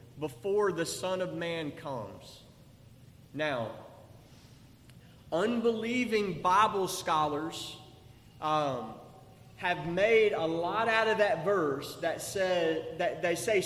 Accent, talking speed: American, 105 wpm